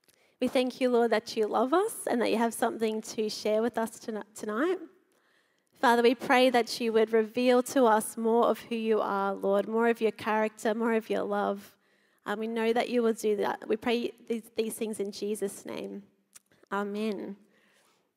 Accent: Australian